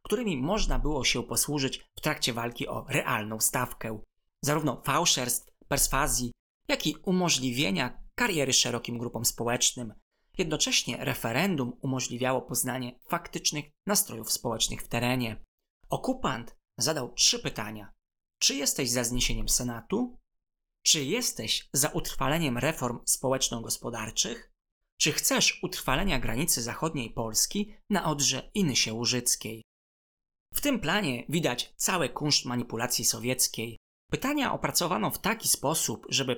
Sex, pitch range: male, 120-150 Hz